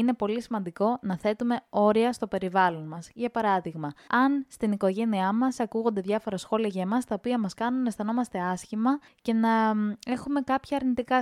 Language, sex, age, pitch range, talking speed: Greek, female, 20-39, 185-240 Hz, 170 wpm